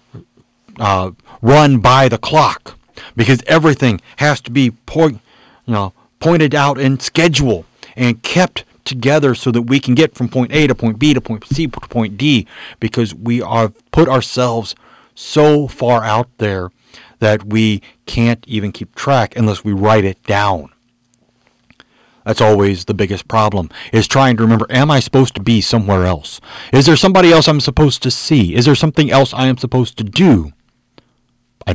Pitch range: 105-135 Hz